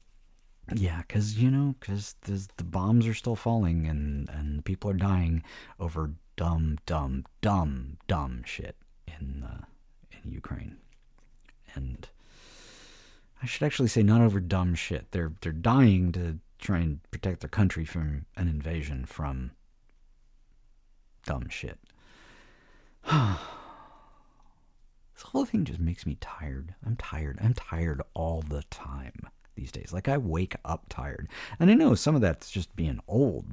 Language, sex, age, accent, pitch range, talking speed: English, male, 50-69, American, 70-110 Hz, 140 wpm